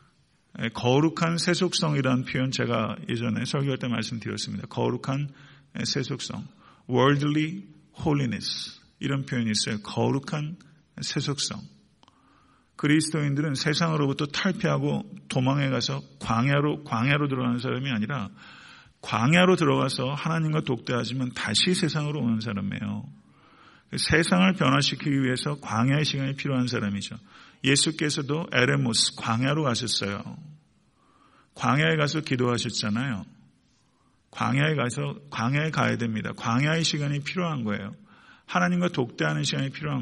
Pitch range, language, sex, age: 120-160 Hz, Korean, male, 50-69